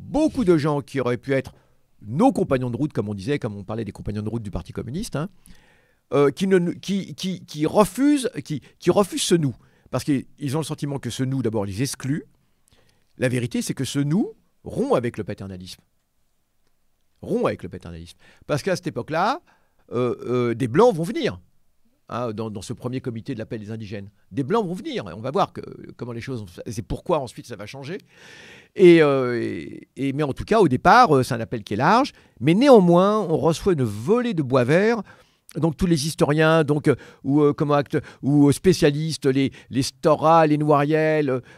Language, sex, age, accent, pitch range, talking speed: French, male, 50-69, French, 125-165 Hz, 210 wpm